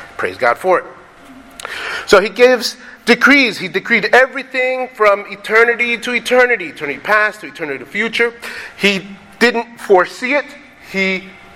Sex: male